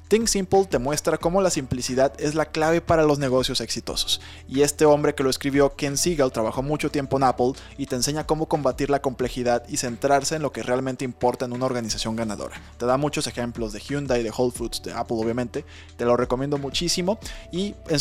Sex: male